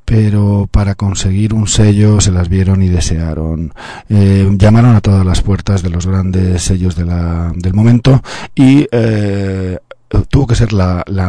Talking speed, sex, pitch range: 155 wpm, male, 90-105 Hz